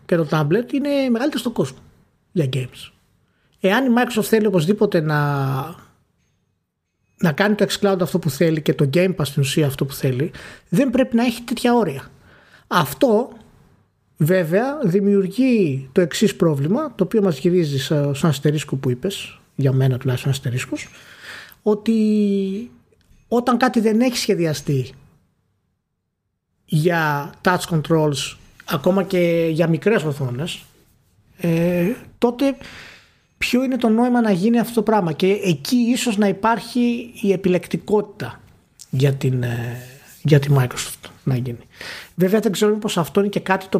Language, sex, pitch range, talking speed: Greek, male, 140-205 Hz, 140 wpm